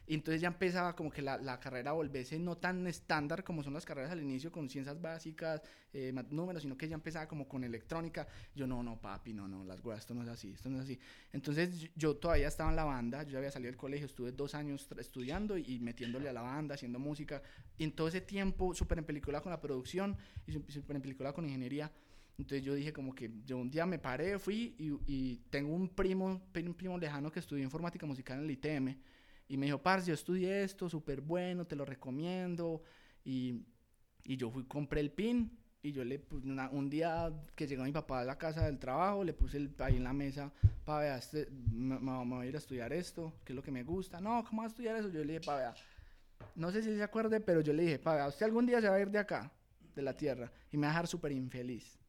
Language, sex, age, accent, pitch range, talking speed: Spanish, male, 20-39, Colombian, 130-170 Hz, 250 wpm